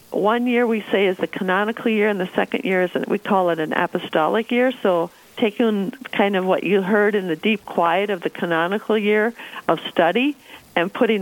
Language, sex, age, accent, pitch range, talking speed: English, female, 50-69, American, 185-235 Hz, 205 wpm